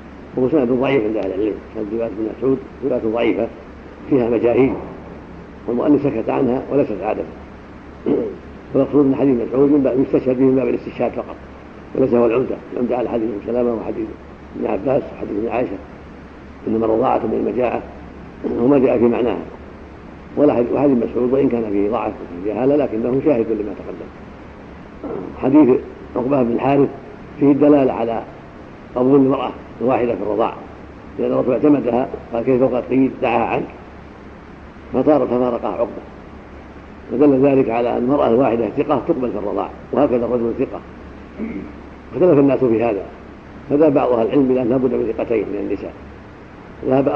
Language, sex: Arabic, male